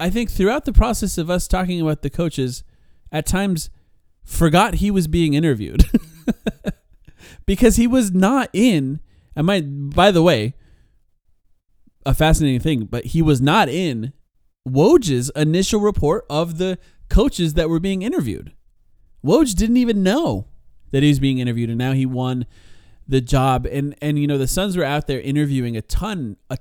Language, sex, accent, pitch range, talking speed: English, male, American, 120-170 Hz, 165 wpm